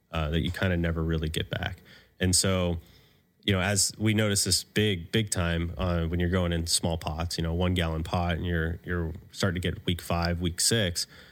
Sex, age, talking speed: male, 30-49, 215 wpm